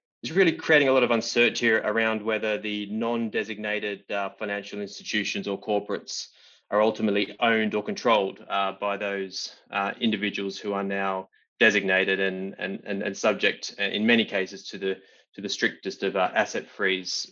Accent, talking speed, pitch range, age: Australian, 150 wpm, 100-115 Hz, 20-39